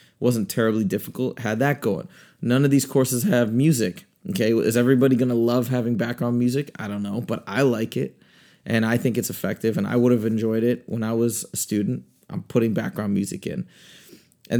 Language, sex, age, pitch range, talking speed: English, male, 20-39, 110-125 Hz, 205 wpm